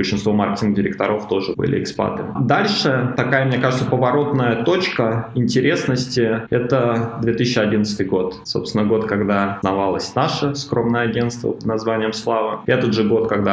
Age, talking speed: 20-39, 130 wpm